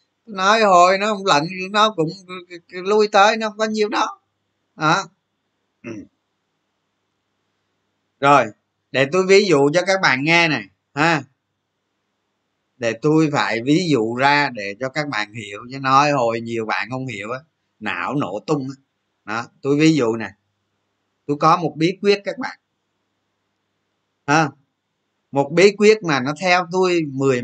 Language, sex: Vietnamese, male